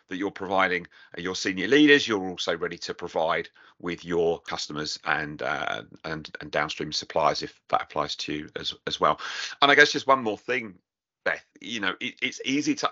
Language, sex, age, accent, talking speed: English, male, 40-59, British, 195 wpm